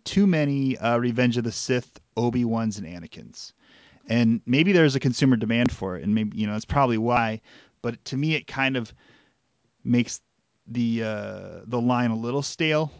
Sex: male